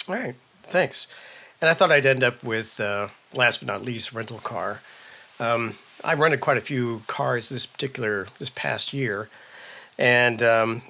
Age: 40-59